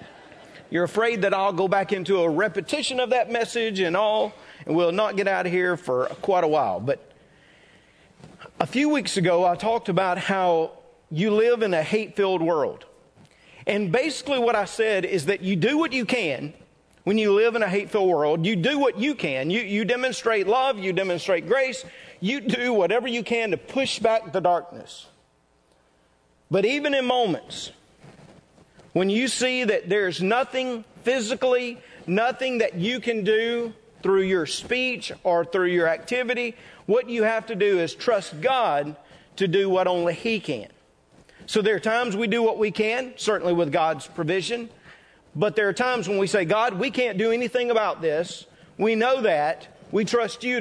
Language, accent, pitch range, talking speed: English, American, 180-240 Hz, 180 wpm